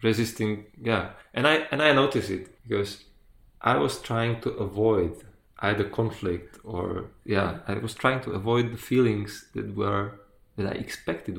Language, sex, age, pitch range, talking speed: Czech, male, 20-39, 100-120 Hz, 160 wpm